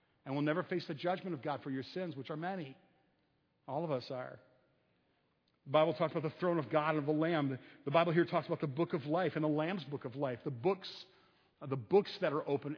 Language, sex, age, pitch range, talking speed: English, male, 50-69, 140-165 Hz, 245 wpm